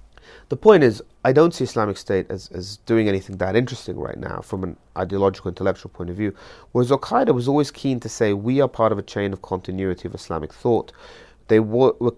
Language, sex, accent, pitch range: English, male, British, 95-120 Hz